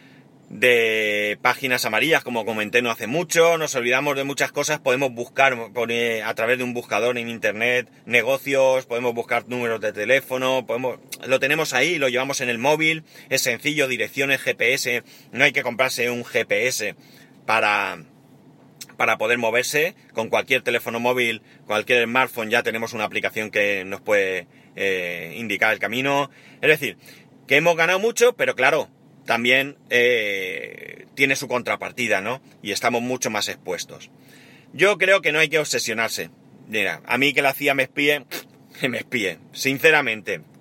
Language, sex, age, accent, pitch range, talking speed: Spanish, male, 30-49, Spanish, 120-165 Hz, 155 wpm